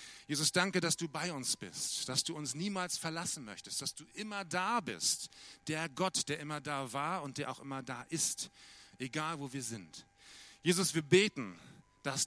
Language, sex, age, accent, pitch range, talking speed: German, male, 40-59, German, 130-165 Hz, 185 wpm